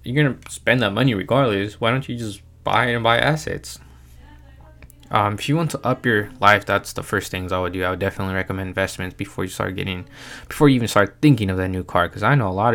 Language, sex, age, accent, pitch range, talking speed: English, male, 20-39, American, 95-125 Hz, 245 wpm